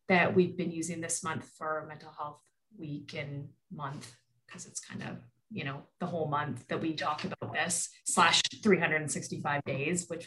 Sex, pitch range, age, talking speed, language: female, 160-205 Hz, 20-39, 175 wpm, English